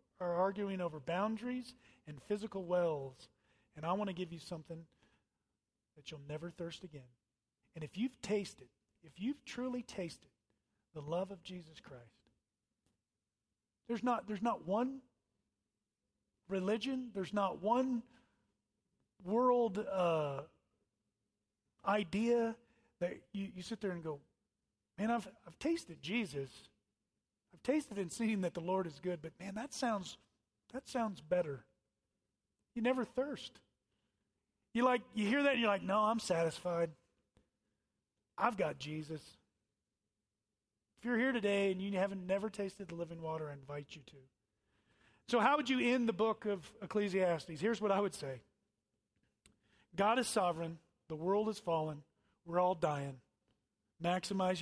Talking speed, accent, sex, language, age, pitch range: 145 wpm, American, male, English, 40-59, 150-220 Hz